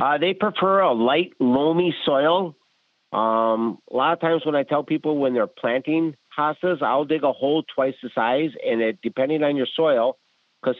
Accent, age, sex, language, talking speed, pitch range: American, 50-69, male, English, 190 wpm, 115-150 Hz